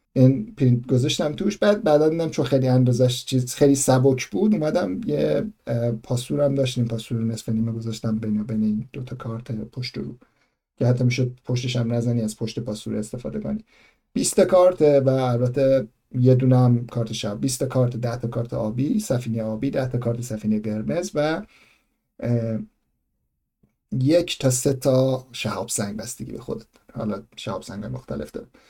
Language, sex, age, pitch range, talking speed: Persian, male, 50-69, 115-145 Hz, 155 wpm